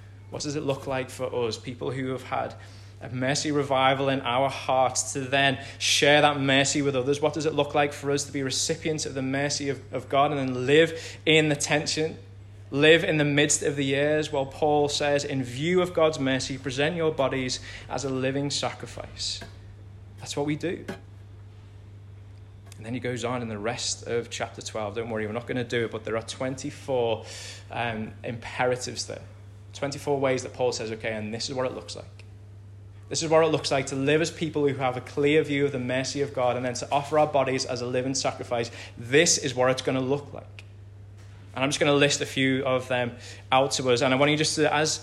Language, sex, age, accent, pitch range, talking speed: English, male, 20-39, British, 110-145 Hz, 225 wpm